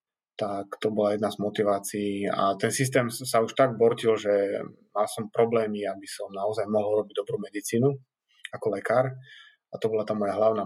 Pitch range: 100-115 Hz